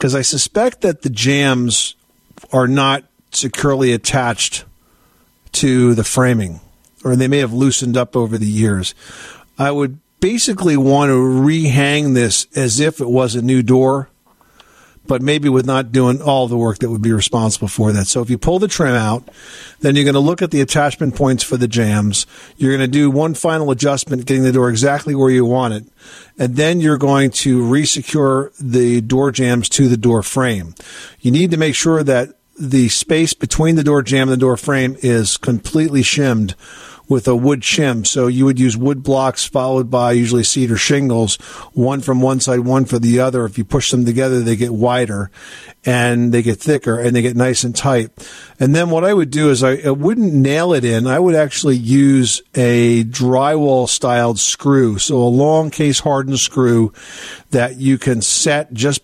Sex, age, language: male, 50-69, English